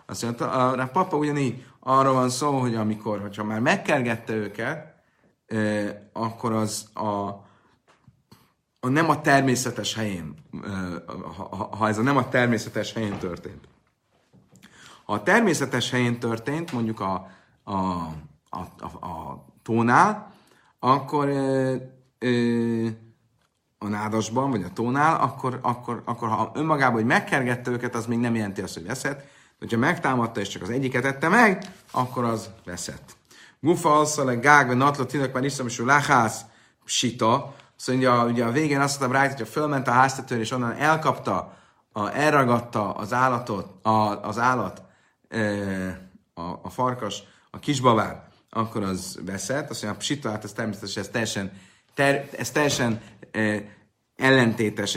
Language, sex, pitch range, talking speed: Hungarian, male, 105-130 Hz, 150 wpm